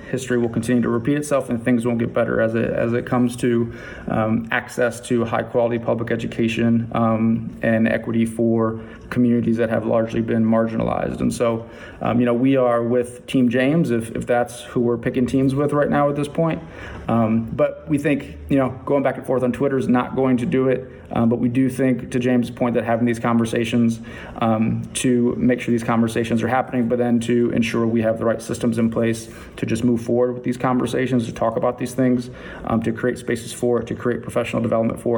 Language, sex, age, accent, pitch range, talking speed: English, male, 30-49, American, 115-125 Hz, 220 wpm